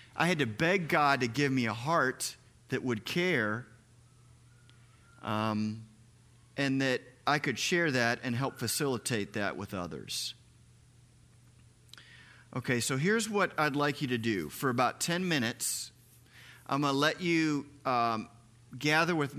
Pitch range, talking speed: 120-145 Hz, 145 wpm